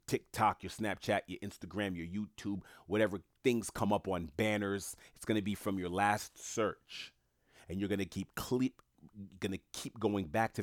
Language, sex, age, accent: English, male, 30-49, American